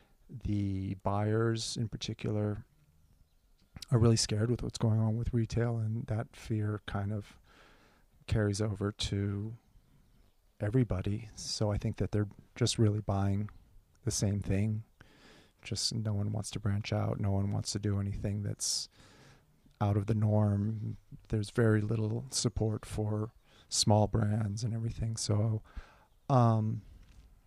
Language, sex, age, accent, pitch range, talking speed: English, male, 40-59, American, 105-115 Hz, 135 wpm